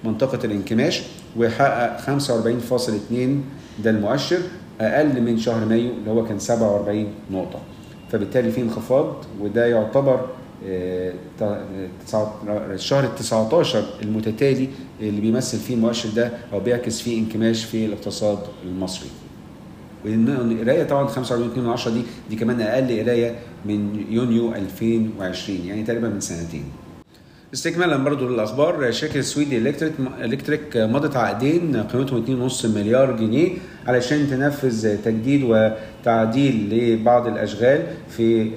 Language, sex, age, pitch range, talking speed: Arabic, male, 50-69, 105-130 Hz, 110 wpm